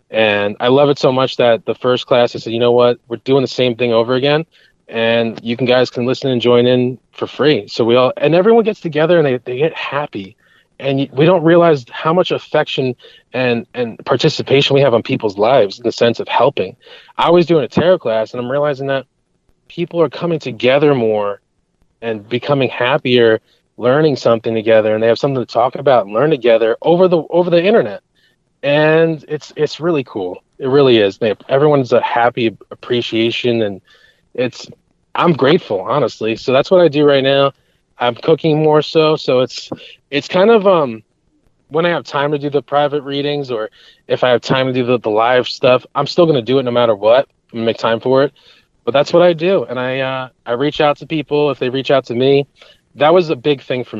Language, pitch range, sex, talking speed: English, 120-150 Hz, male, 215 wpm